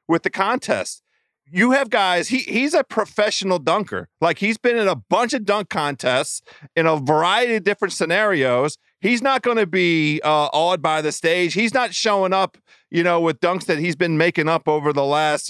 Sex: male